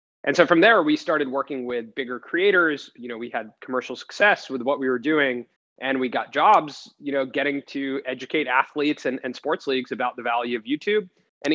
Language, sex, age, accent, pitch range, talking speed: English, male, 20-39, American, 130-175 Hz, 215 wpm